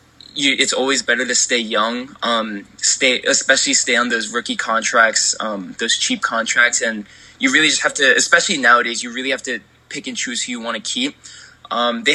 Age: 20-39